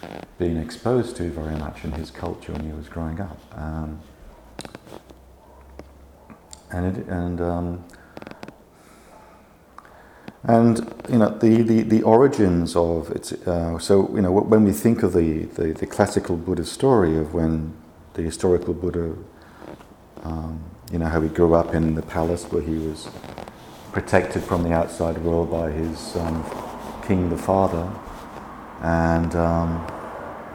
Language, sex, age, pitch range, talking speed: English, male, 50-69, 80-90 Hz, 140 wpm